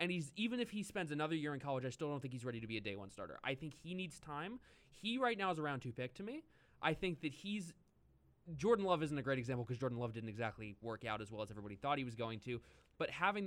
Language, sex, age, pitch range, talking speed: English, male, 20-39, 130-170 Hz, 275 wpm